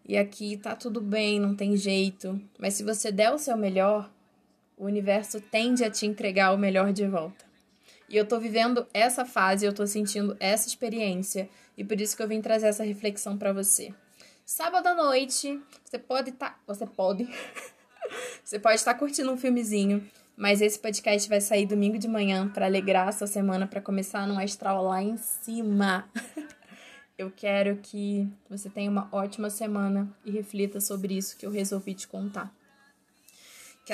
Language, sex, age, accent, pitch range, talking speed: Portuguese, female, 20-39, Brazilian, 200-225 Hz, 175 wpm